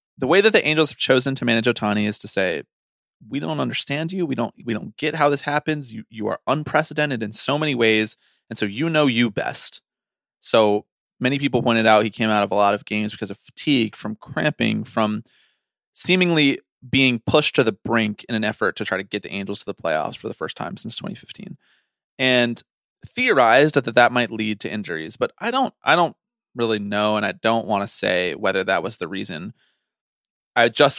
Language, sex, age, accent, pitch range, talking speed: English, male, 20-39, American, 105-135 Hz, 215 wpm